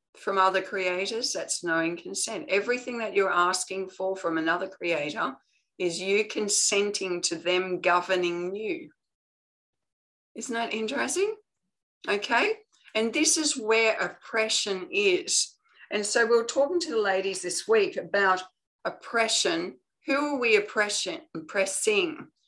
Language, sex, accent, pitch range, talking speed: English, female, Australian, 175-235 Hz, 130 wpm